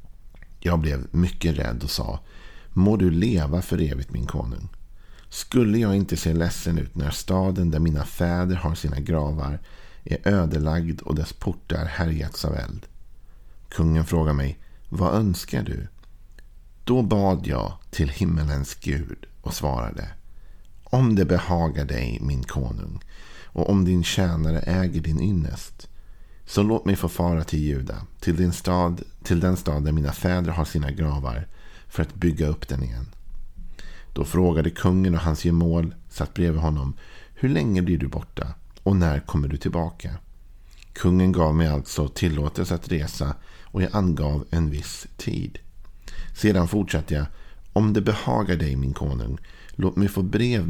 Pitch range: 80-95 Hz